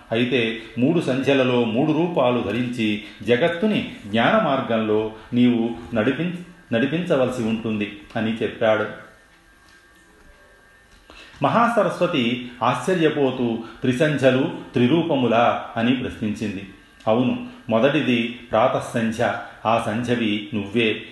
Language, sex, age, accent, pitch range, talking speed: Telugu, male, 40-59, native, 110-130 Hz, 75 wpm